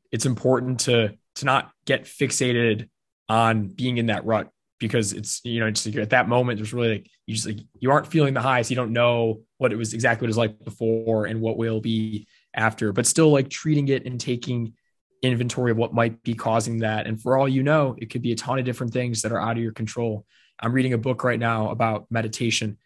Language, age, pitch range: English, 20-39, 110-120 Hz